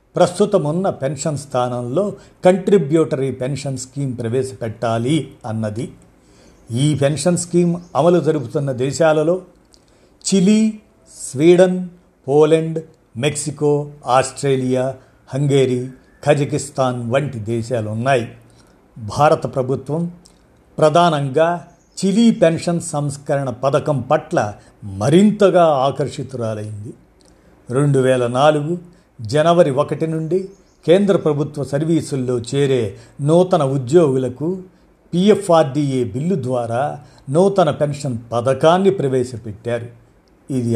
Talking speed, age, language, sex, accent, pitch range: 75 wpm, 50-69, Telugu, male, native, 125-165 Hz